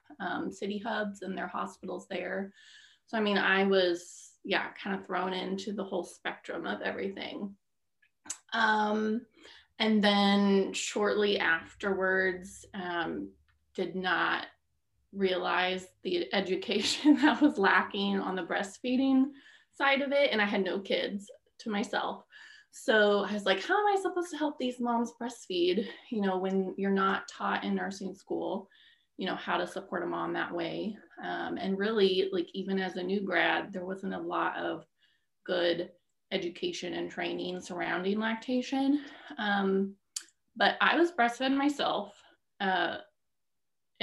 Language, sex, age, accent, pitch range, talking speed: English, female, 20-39, American, 185-245 Hz, 145 wpm